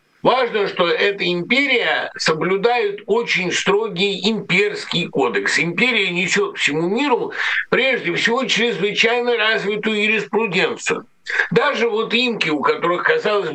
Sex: male